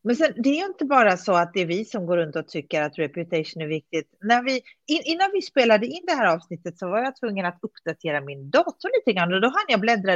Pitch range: 170-245 Hz